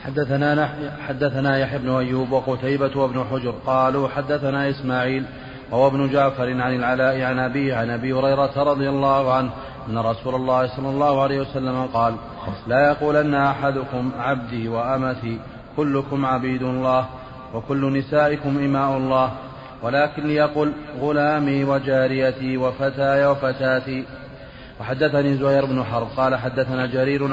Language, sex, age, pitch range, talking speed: Arabic, male, 30-49, 130-140 Hz, 125 wpm